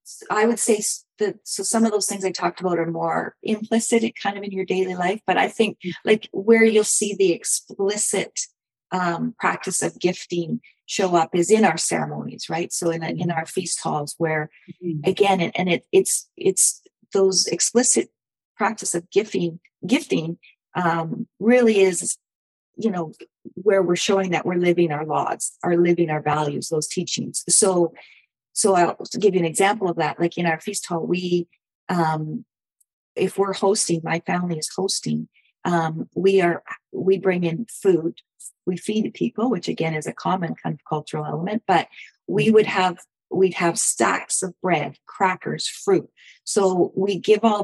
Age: 40-59